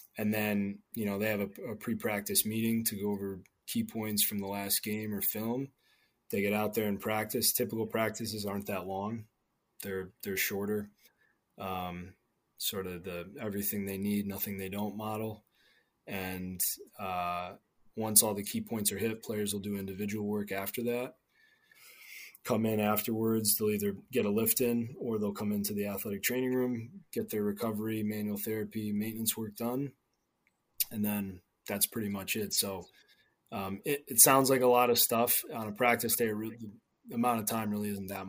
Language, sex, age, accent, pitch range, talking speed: English, male, 20-39, American, 100-115 Hz, 180 wpm